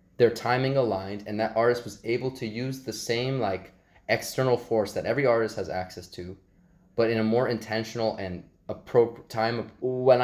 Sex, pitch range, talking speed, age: male, 105-120 Hz, 180 wpm, 20-39